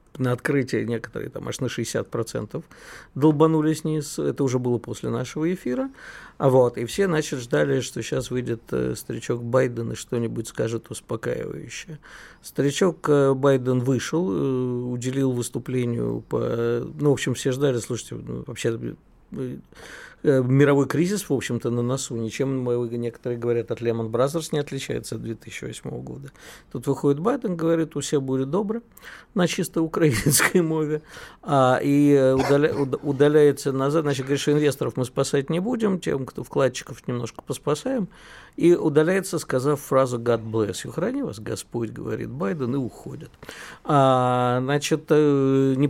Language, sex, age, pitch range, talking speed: Russian, male, 50-69, 120-155 Hz, 135 wpm